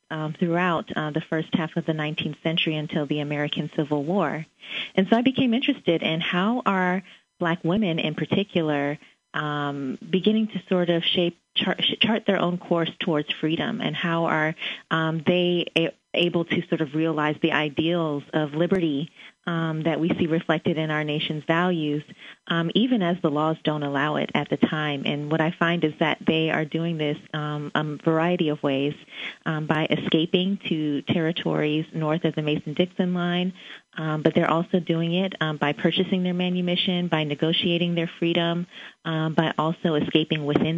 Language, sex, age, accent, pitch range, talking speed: English, female, 30-49, American, 155-175 Hz, 175 wpm